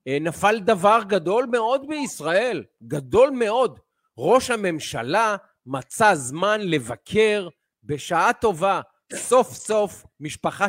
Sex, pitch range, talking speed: male, 155-215 Hz, 95 wpm